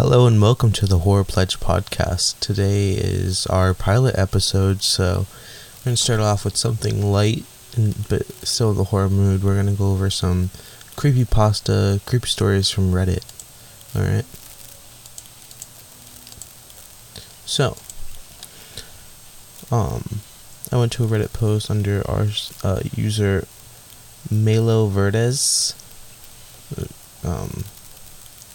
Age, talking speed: 20-39, 120 wpm